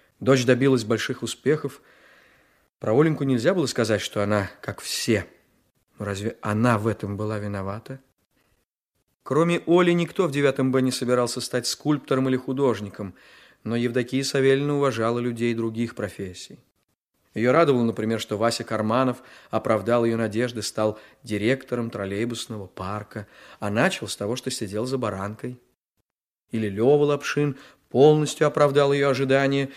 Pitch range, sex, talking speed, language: 115-150 Hz, male, 140 wpm, Russian